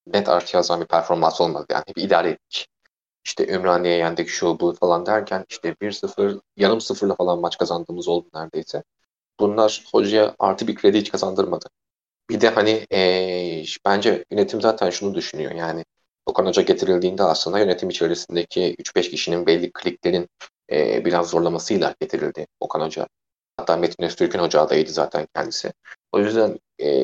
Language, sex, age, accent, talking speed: Turkish, male, 30-49, native, 155 wpm